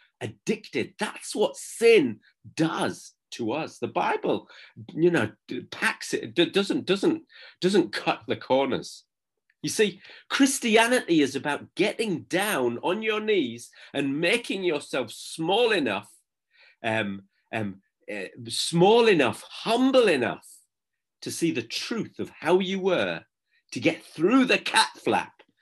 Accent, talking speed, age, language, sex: British, 130 wpm, 40-59, English, male